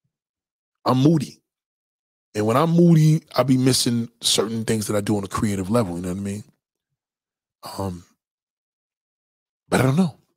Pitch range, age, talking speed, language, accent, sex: 105-130 Hz, 20-39, 170 wpm, English, American, male